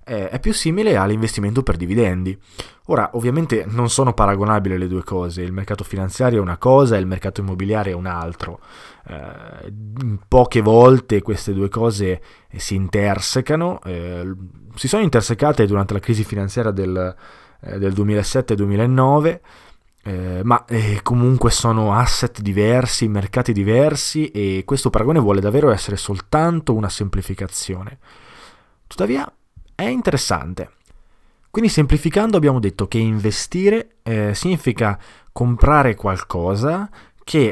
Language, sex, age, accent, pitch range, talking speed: Italian, male, 20-39, native, 95-130 Hz, 125 wpm